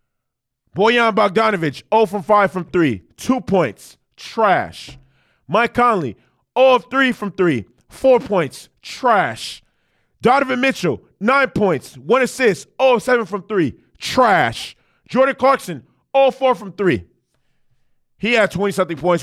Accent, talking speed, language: American, 135 wpm, English